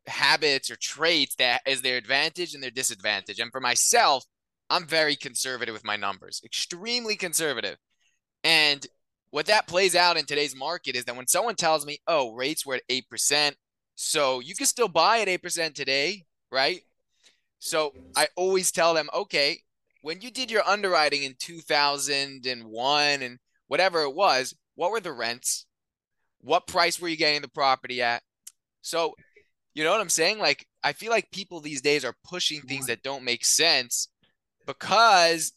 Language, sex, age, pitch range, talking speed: English, male, 20-39, 130-170 Hz, 165 wpm